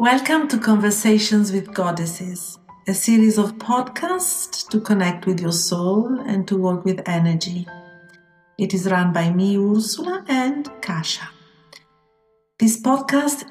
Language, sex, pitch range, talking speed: English, female, 175-215 Hz, 130 wpm